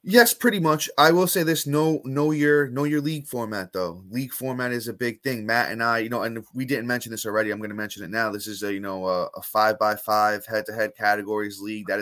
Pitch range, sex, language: 105-125 Hz, male, English